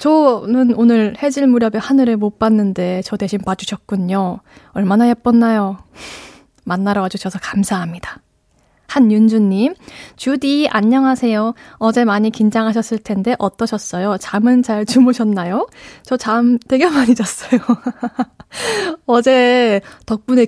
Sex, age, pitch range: female, 20-39, 205-255 Hz